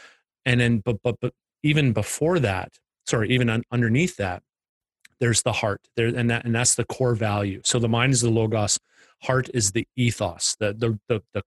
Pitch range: 105-125 Hz